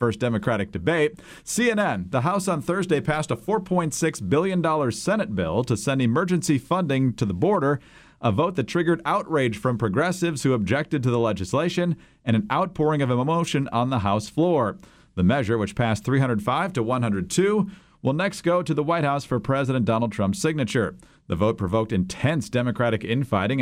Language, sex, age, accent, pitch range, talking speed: English, male, 40-59, American, 115-155 Hz, 170 wpm